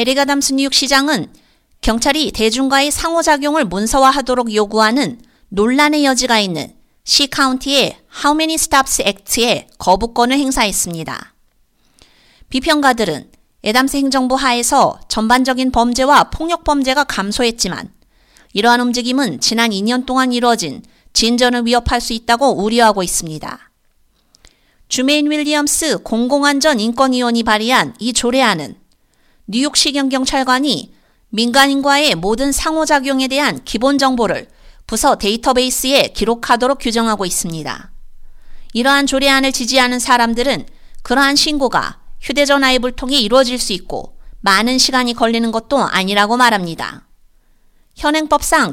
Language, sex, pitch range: Korean, female, 230-280 Hz